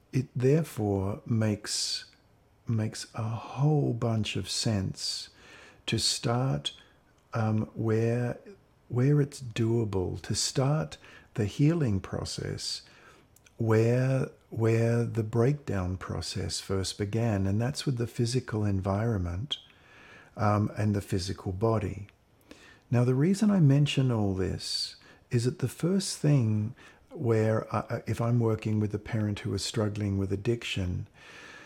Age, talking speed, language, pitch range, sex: 50-69, 120 wpm, English, 105-125 Hz, male